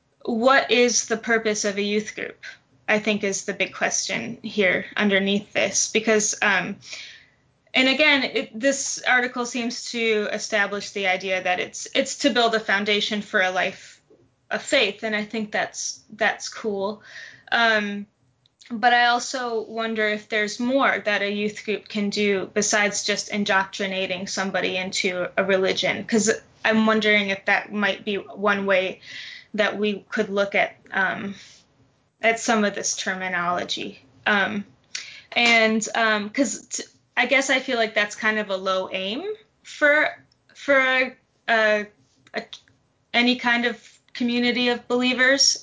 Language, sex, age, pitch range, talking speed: English, female, 20-39, 195-230 Hz, 150 wpm